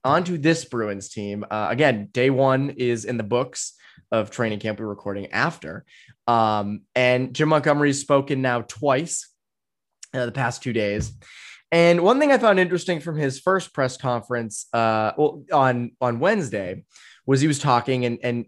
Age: 20-39